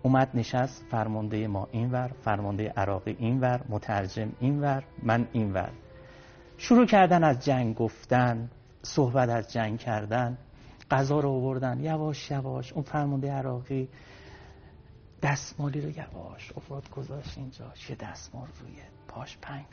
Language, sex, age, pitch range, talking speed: Persian, male, 60-79, 115-140 Hz, 130 wpm